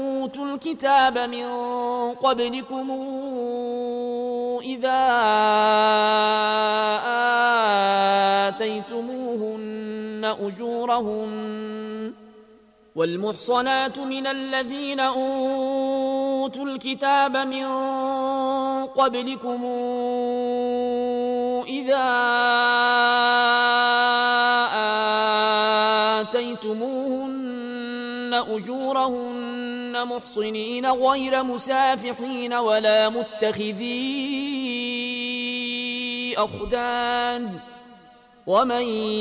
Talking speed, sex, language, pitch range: 35 wpm, male, Arabic, 220-260 Hz